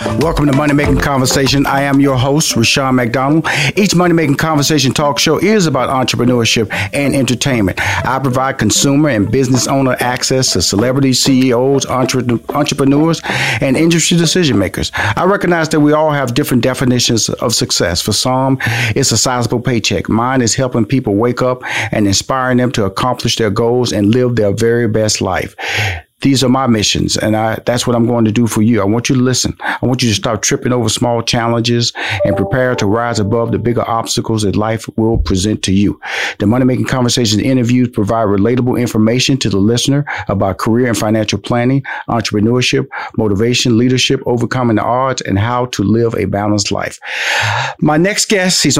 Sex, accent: male, American